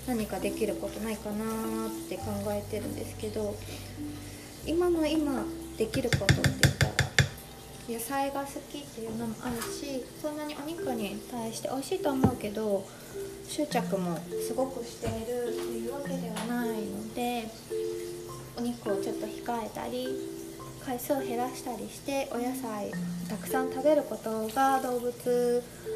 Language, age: Japanese, 20-39